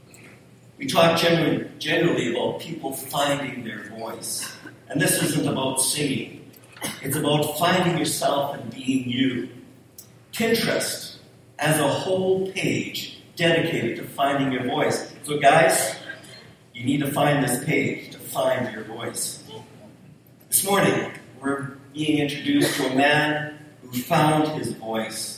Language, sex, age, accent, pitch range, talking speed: English, male, 50-69, American, 130-165 Hz, 130 wpm